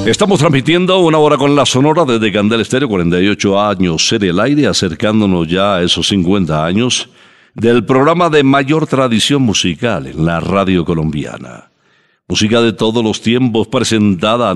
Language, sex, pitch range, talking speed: Spanish, male, 90-130 Hz, 155 wpm